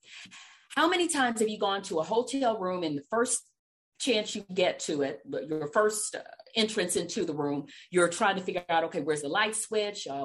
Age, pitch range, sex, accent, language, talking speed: 40-59, 165-250 Hz, female, American, English, 205 wpm